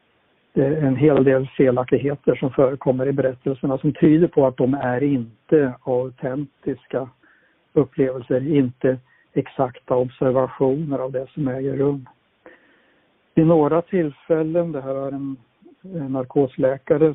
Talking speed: 125 wpm